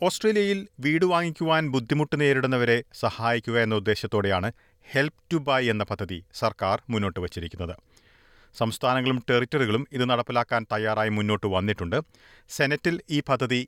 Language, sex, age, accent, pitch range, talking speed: Malayalam, male, 40-59, native, 100-140 Hz, 115 wpm